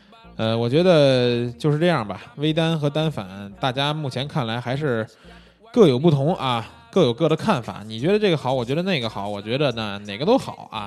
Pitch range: 115-160 Hz